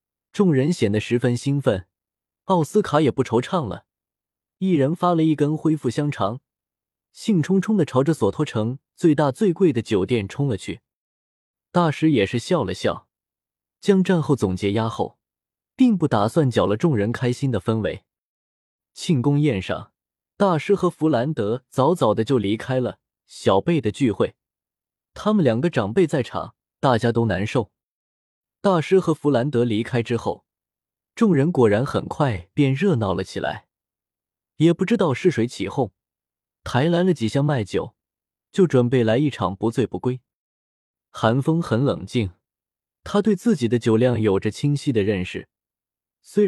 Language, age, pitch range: Chinese, 20-39, 105-165 Hz